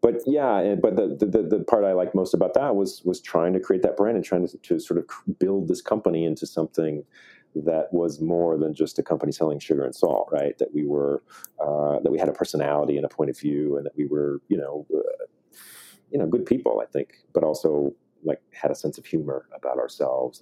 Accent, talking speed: American, 230 wpm